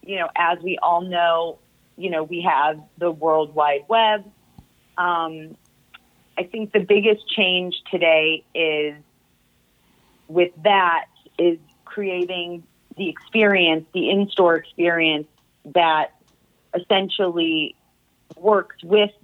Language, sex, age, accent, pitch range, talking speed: English, female, 30-49, American, 155-190 Hz, 110 wpm